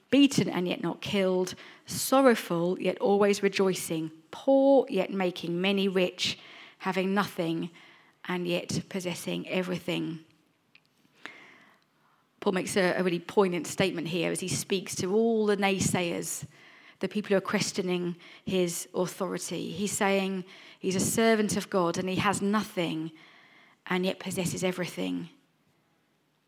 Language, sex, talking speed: English, female, 125 wpm